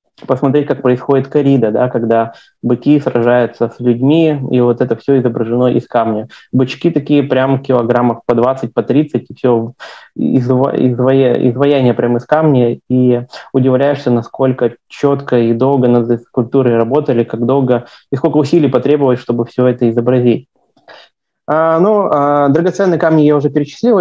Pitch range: 125-145 Hz